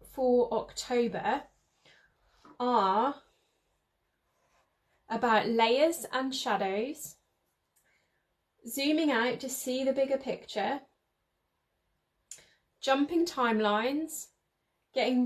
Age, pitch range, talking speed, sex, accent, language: 10-29, 210-260 Hz, 65 wpm, female, British, English